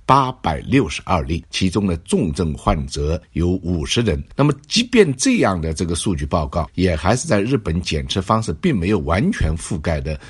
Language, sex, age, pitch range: Chinese, male, 50-69, 80-105 Hz